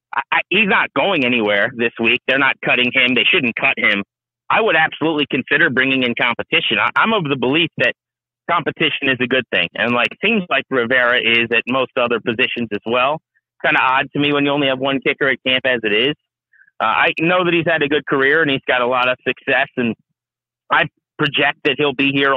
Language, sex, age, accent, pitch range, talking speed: English, male, 40-59, American, 120-150 Hz, 225 wpm